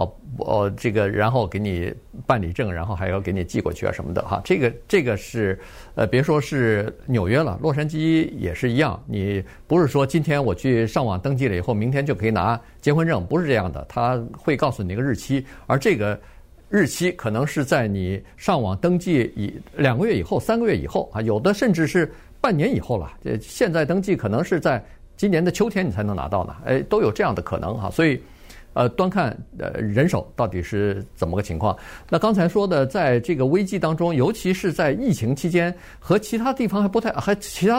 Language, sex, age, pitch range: Chinese, male, 50-69, 105-170 Hz